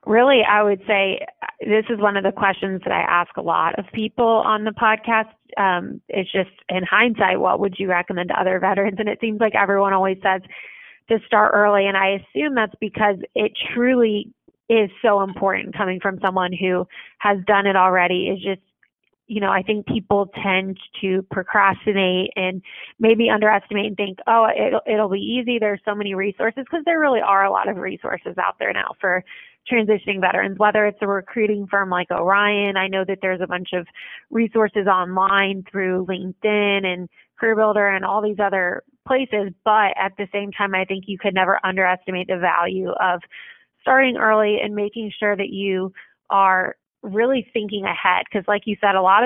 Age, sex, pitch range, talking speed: 20-39, female, 190-215 Hz, 190 wpm